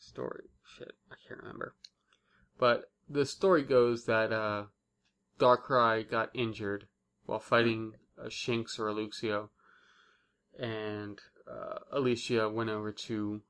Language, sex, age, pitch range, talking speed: English, male, 20-39, 110-125 Hz, 120 wpm